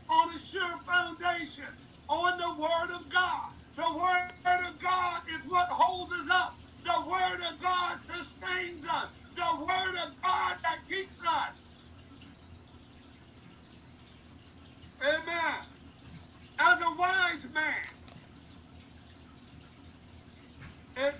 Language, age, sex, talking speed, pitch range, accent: English, 50-69, male, 105 wpm, 325-360 Hz, American